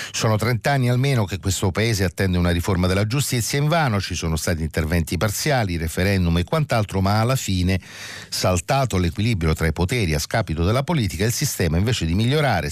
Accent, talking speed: native, 185 wpm